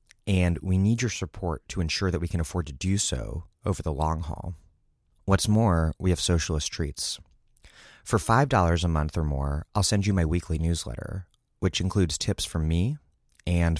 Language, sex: English, male